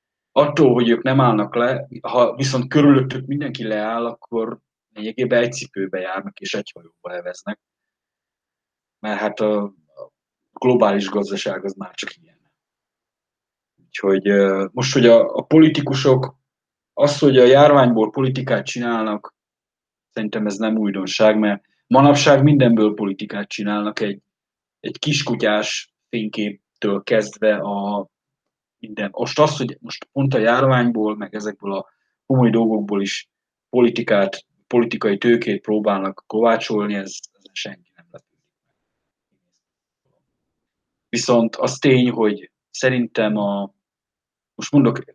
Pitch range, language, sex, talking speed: 105-130 Hz, Hungarian, male, 120 wpm